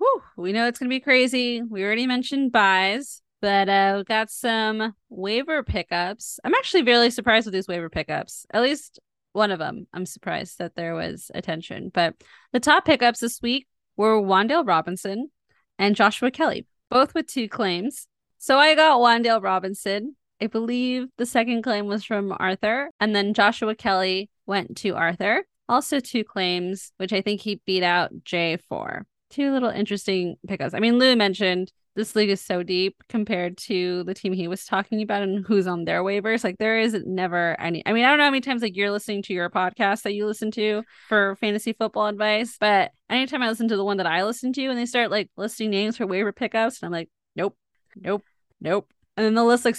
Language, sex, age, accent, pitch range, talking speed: English, female, 20-39, American, 195-245 Hz, 200 wpm